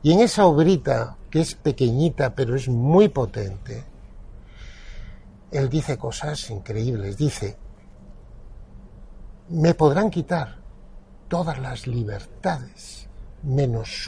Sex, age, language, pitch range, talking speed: male, 60-79, Spanish, 105-150 Hz, 100 wpm